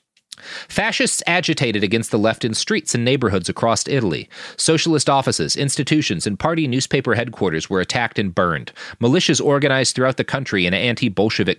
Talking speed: 150 wpm